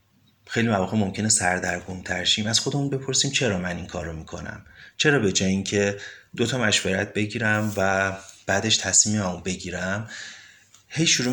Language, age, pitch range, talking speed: Persian, 30-49, 95-110 Hz, 150 wpm